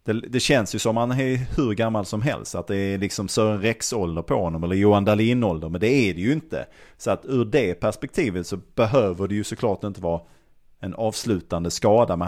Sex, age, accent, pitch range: male, 30-49, Norwegian, 90-110 Hz